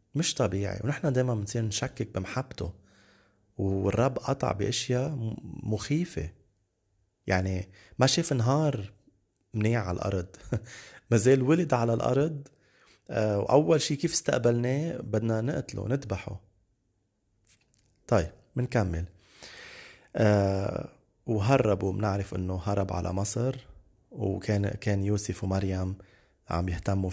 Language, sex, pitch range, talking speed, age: Arabic, male, 100-130 Hz, 100 wpm, 30-49